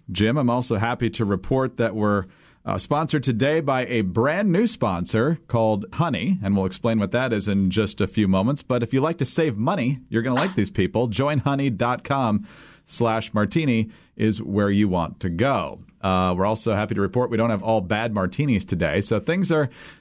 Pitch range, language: 110-155 Hz, English